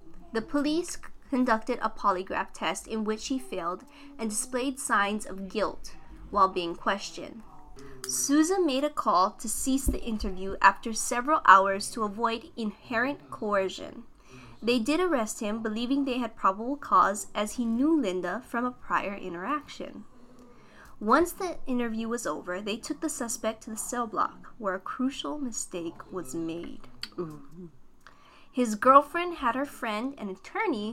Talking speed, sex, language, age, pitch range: 150 wpm, female, English, 20-39, 200-275 Hz